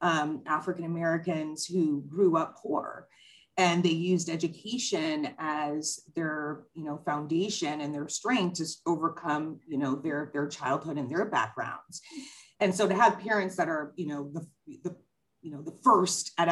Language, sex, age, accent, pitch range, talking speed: English, female, 30-49, American, 155-200 Hz, 165 wpm